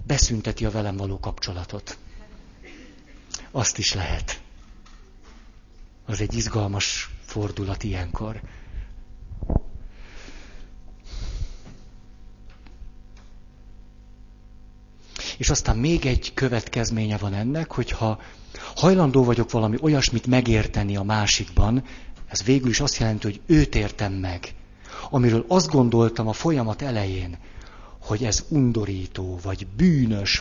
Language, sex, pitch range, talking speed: Hungarian, male, 95-115 Hz, 95 wpm